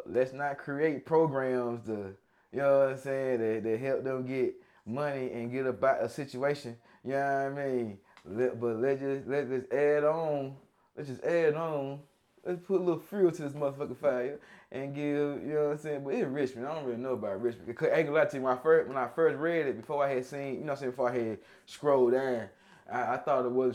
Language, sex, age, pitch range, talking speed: English, male, 20-39, 130-175 Hz, 235 wpm